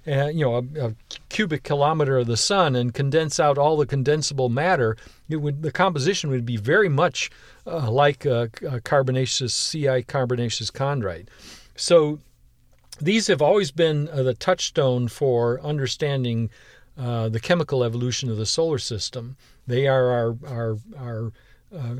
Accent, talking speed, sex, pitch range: American, 155 wpm, male, 125-160 Hz